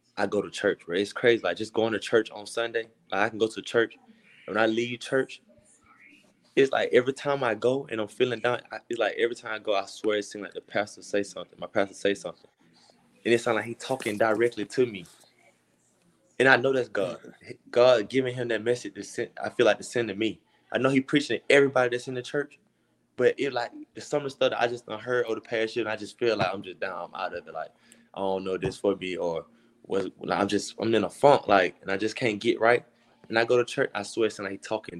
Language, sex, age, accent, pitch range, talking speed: English, male, 20-39, American, 100-120 Hz, 255 wpm